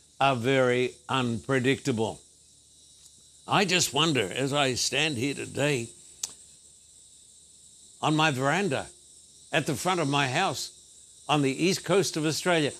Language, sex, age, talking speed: English, male, 70-89, 120 wpm